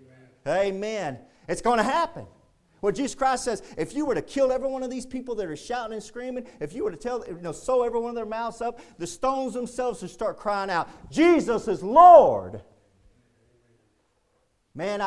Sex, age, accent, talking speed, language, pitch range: male, 40-59, American, 200 wpm, English, 140-230 Hz